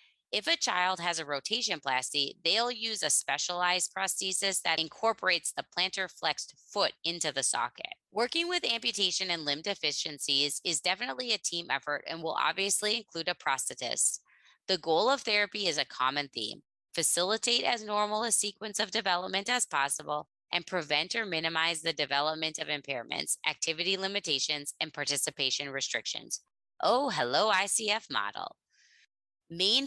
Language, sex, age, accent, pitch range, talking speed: English, female, 20-39, American, 150-205 Hz, 145 wpm